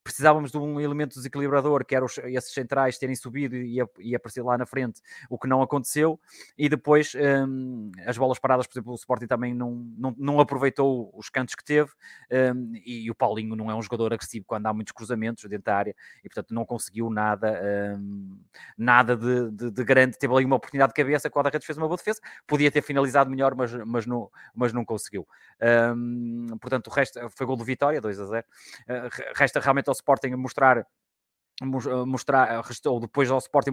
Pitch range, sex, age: 120-140 Hz, male, 20-39